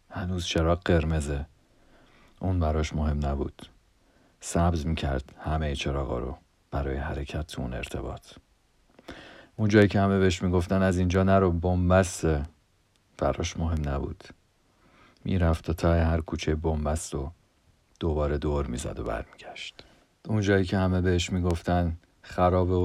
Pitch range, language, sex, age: 75-90 Hz, Persian, male, 50-69